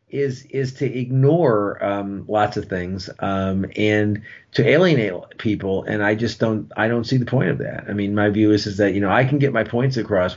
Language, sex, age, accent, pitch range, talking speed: English, male, 40-59, American, 95-110 Hz, 225 wpm